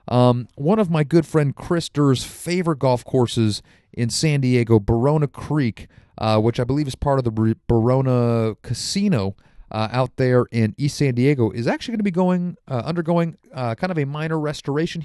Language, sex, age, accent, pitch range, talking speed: English, male, 40-59, American, 115-150 Hz, 185 wpm